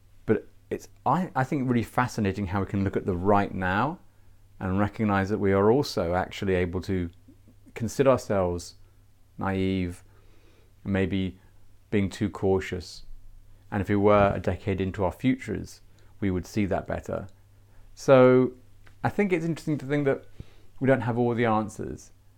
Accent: British